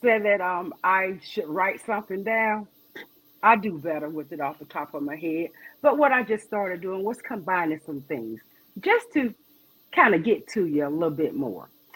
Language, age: English, 40-59